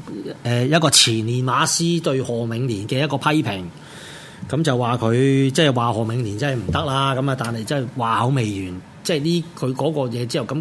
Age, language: 30-49, Chinese